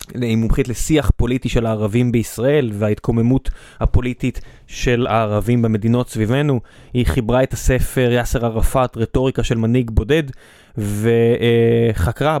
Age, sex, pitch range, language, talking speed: 20-39, male, 115-135 Hz, Hebrew, 115 wpm